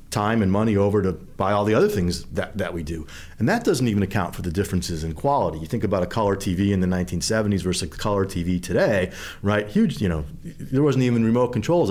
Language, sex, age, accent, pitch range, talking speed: English, male, 40-59, American, 95-125 Hz, 235 wpm